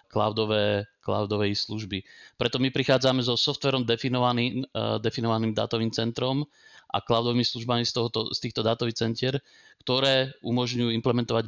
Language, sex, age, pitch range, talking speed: Slovak, male, 20-39, 105-120 Hz, 130 wpm